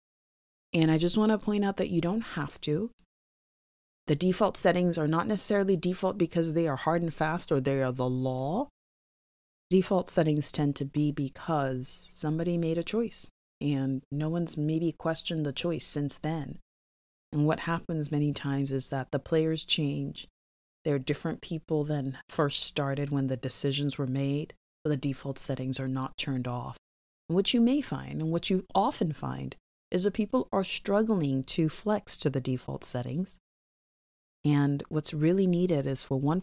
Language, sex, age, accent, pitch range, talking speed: English, female, 30-49, American, 135-180 Hz, 175 wpm